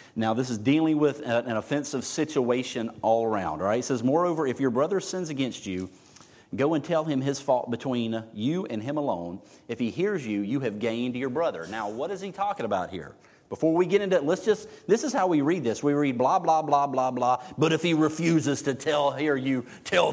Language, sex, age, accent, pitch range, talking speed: English, male, 40-59, American, 115-150 Hz, 225 wpm